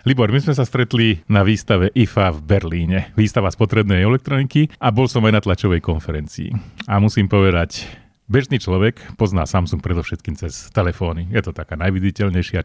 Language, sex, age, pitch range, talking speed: Slovak, male, 30-49, 90-110 Hz, 160 wpm